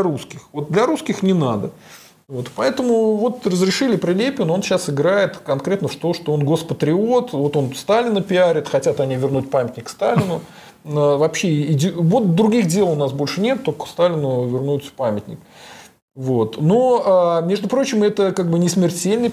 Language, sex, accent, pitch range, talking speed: Russian, male, native, 150-215 Hz, 155 wpm